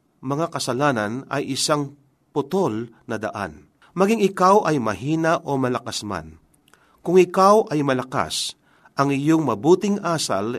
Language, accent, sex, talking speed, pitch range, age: Filipino, native, male, 125 wpm, 120-170 Hz, 40-59